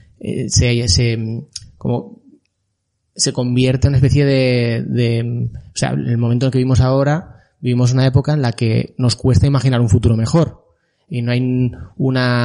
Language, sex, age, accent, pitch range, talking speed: Spanish, male, 20-39, Spanish, 120-130 Hz, 170 wpm